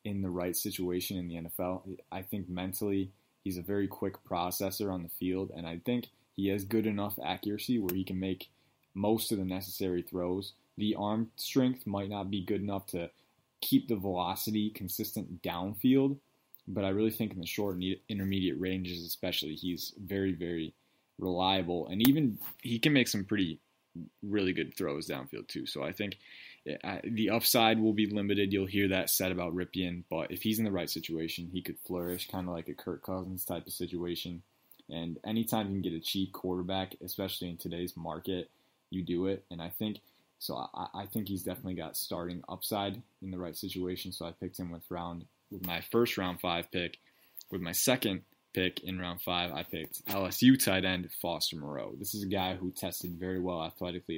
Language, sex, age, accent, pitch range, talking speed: English, male, 20-39, American, 90-100 Hz, 195 wpm